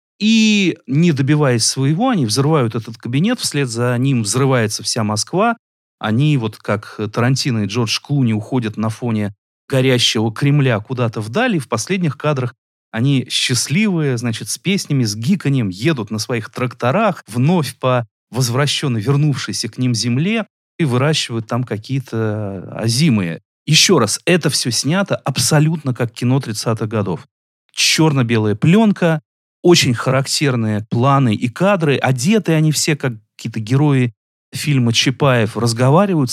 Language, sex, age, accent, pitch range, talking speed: Russian, male, 30-49, native, 110-140 Hz, 130 wpm